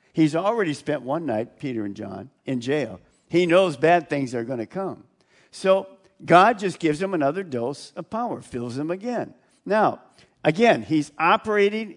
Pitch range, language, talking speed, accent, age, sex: 145-200 Hz, English, 170 wpm, American, 50-69, male